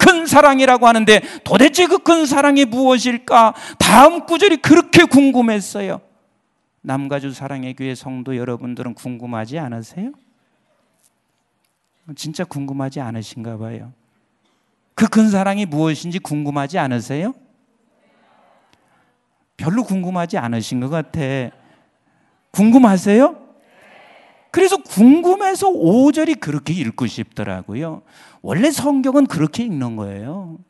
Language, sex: Korean, male